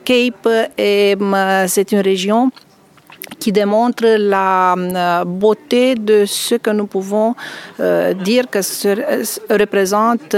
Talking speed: 100 wpm